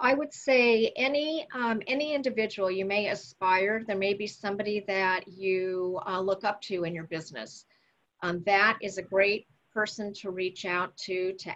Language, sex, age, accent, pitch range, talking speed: English, female, 40-59, American, 185-215 Hz, 175 wpm